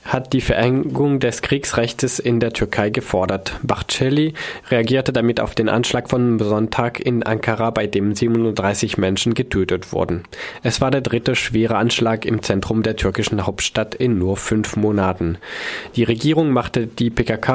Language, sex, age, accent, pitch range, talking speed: German, male, 20-39, German, 105-125 Hz, 155 wpm